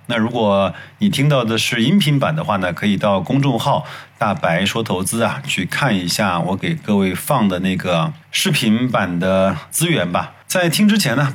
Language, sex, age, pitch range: Chinese, male, 30-49, 110-160 Hz